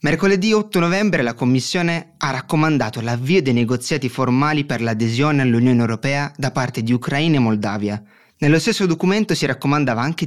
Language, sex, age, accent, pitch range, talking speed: Italian, male, 30-49, native, 115-150 Hz, 160 wpm